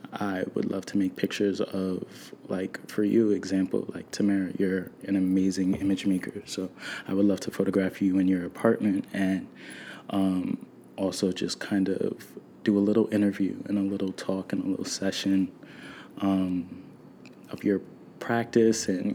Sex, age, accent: male, 20-39, American